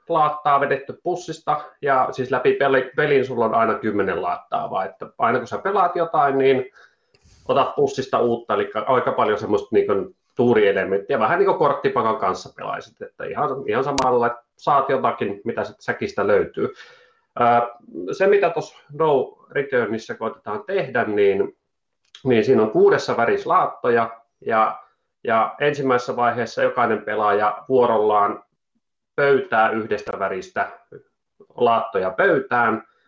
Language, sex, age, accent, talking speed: Finnish, male, 30-49, native, 125 wpm